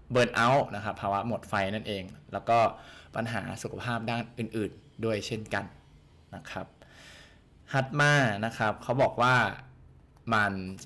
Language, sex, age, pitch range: Thai, male, 20-39, 100-125 Hz